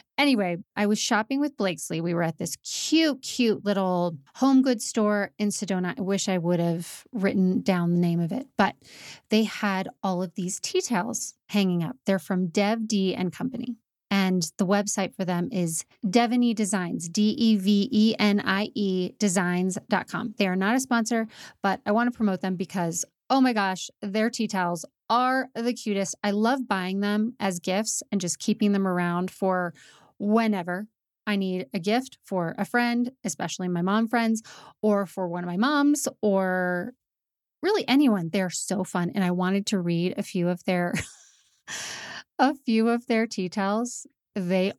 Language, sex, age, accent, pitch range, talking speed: English, female, 30-49, American, 185-235 Hz, 170 wpm